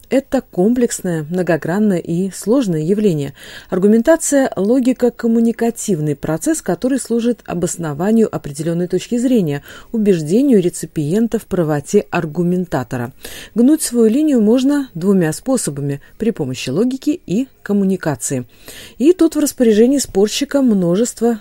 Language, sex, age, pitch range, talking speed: Russian, female, 40-59, 160-230 Hz, 110 wpm